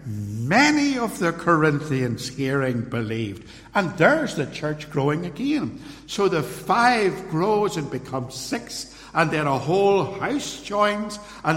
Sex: male